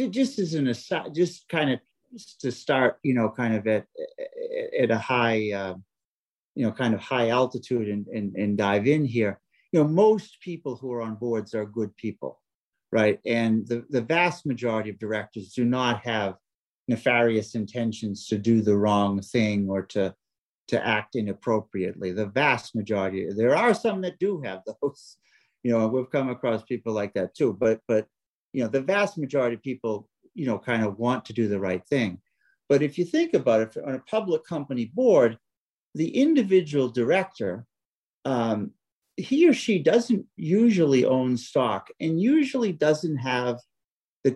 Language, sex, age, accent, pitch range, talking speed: English, male, 50-69, American, 110-165 Hz, 175 wpm